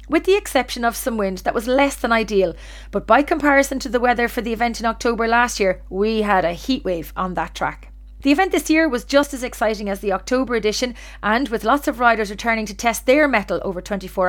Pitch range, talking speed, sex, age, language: 200-260 Hz, 230 wpm, female, 30-49, English